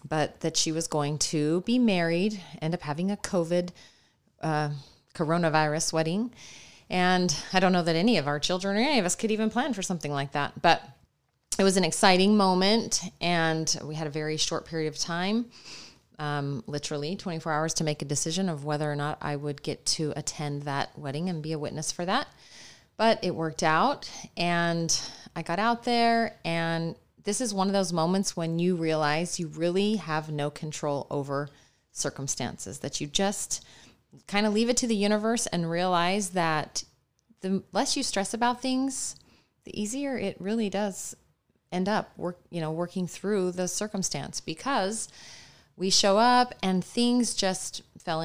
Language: English